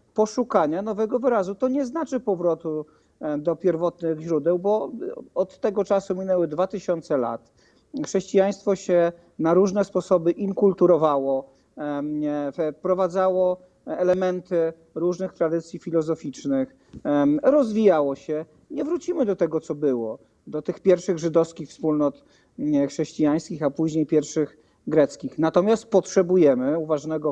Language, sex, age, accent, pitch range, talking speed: Polish, male, 40-59, native, 150-195 Hz, 110 wpm